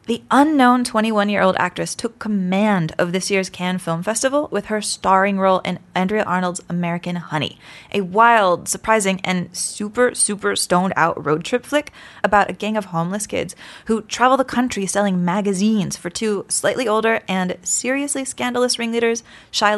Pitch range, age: 190-235 Hz, 20-39